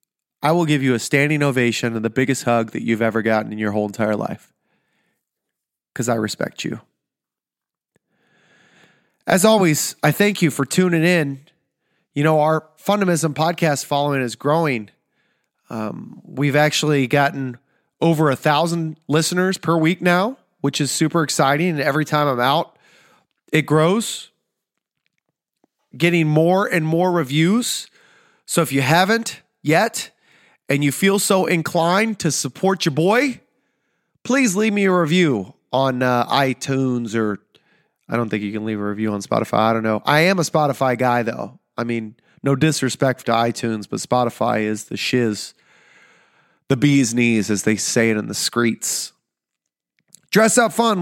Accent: American